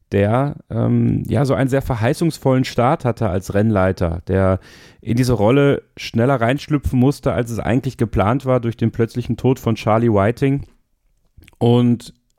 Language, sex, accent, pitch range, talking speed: German, male, German, 100-125 Hz, 150 wpm